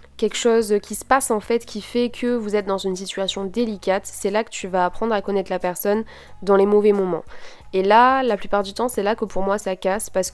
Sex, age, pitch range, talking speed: female, 20-39, 185-210 Hz, 255 wpm